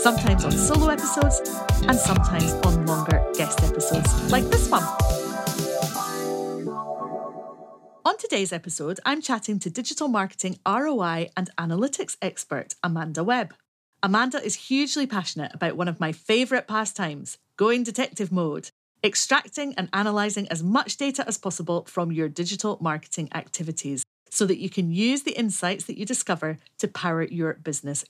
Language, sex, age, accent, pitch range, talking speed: English, female, 30-49, British, 165-230 Hz, 145 wpm